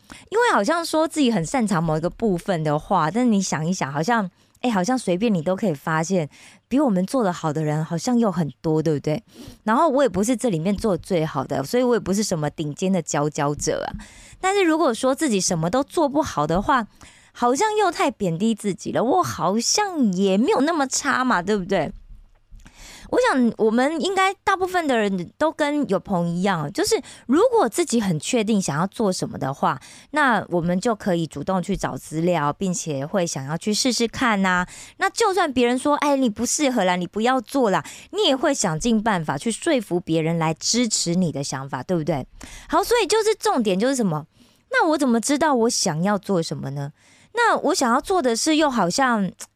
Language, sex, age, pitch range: Korean, female, 20-39, 175-275 Hz